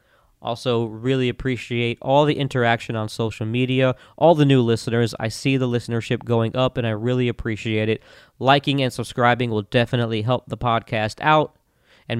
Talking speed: 165 wpm